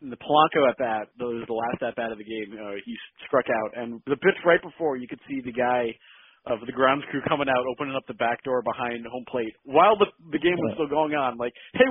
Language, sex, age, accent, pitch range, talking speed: English, male, 30-49, American, 115-155 Hz, 240 wpm